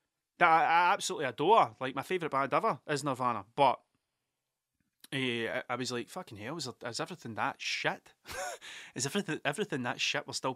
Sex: male